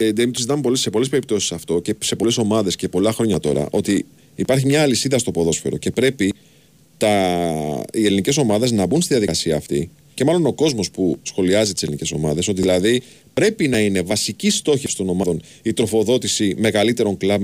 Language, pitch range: Greek, 105-150 Hz